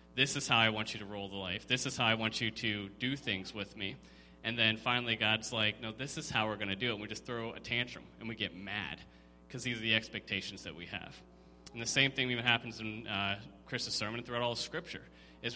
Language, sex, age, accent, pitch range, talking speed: English, male, 30-49, American, 105-130 Hz, 265 wpm